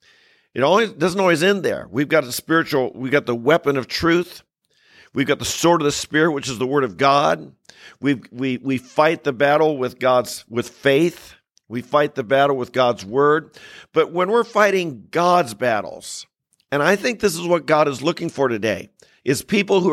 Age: 50-69